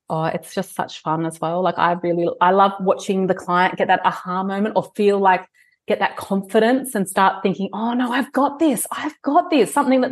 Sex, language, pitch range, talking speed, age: female, English, 185-235 Hz, 225 wpm, 30-49